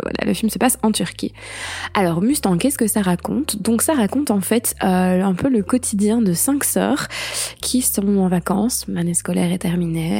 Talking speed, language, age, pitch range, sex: 195 wpm, French, 20-39, 185-220 Hz, female